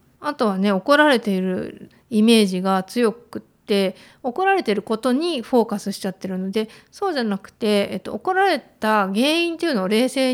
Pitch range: 200-260 Hz